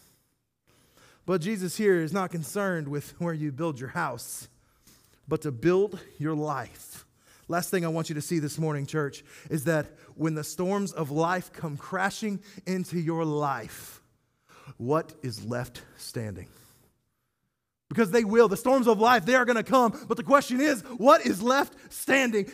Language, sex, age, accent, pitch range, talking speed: English, male, 30-49, American, 160-270 Hz, 170 wpm